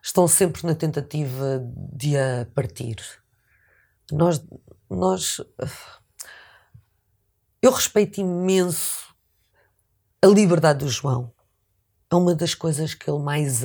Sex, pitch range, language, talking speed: female, 120-190 Hz, Portuguese, 100 wpm